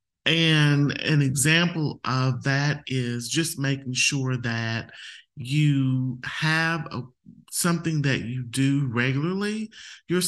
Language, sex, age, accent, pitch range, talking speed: English, male, 30-49, American, 120-140 Hz, 105 wpm